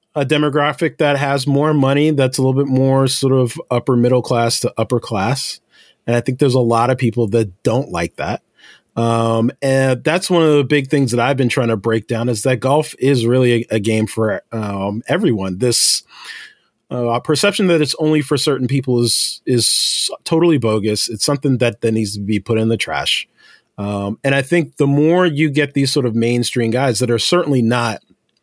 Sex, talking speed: male, 205 wpm